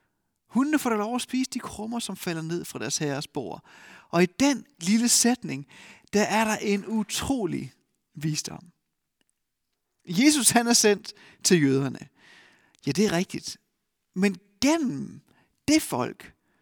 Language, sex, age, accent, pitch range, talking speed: Danish, male, 30-49, native, 170-235 Hz, 145 wpm